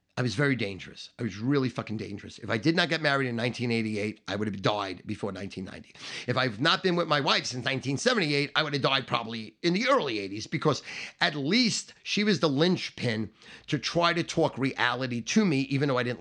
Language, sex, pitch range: English, male, 120-165 Hz